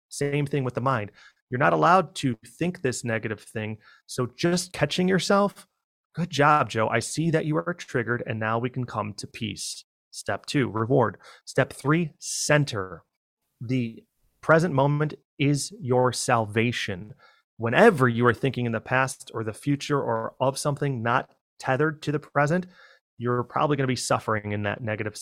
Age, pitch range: 30-49, 115-145 Hz